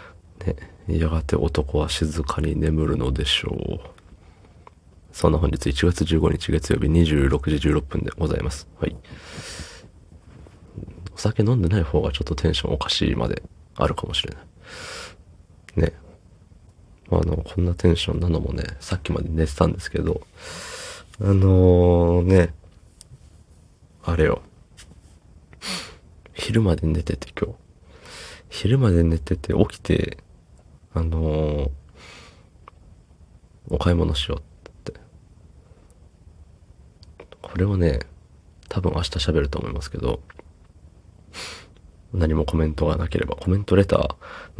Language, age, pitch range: Japanese, 30-49, 80-90 Hz